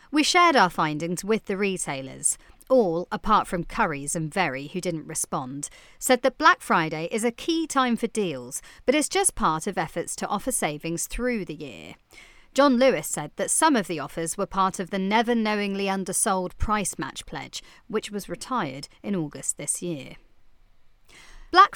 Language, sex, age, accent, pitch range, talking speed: English, female, 40-59, British, 170-240 Hz, 175 wpm